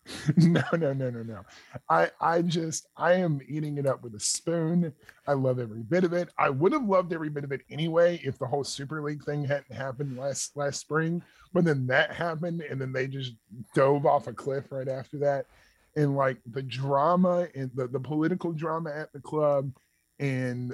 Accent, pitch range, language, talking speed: American, 130-160 Hz, English, 205 wpm